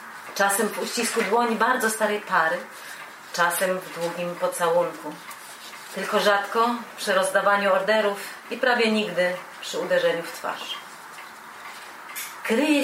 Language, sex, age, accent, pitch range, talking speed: Polish, female, 30-49, native, 185-230 Hz, 110 wpm